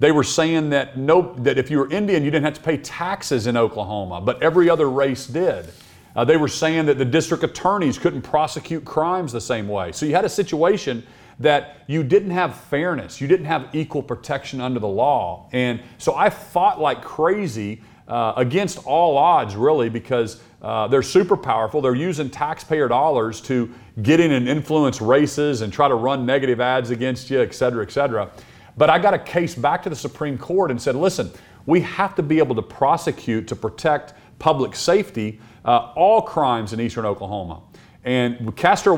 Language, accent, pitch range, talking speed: English, American, 115-155 Hz, 195 wpm